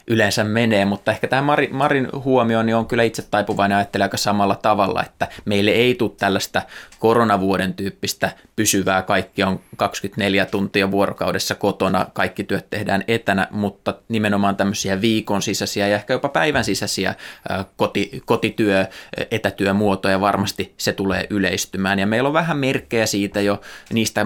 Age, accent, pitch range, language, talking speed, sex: 20-39, native, 100-110 Hz, Finnish, 140 wpm, male